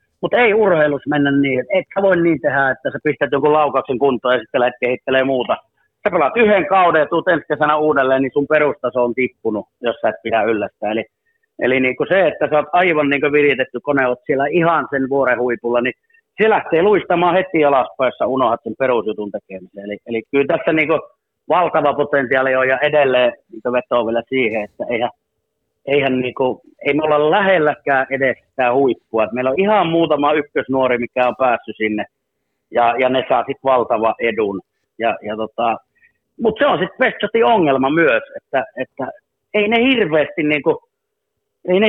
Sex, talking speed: male, 175 wpm